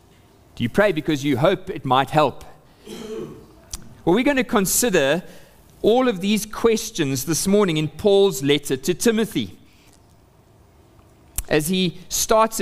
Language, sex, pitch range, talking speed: English, male, 145-200 Hz, 130 wpm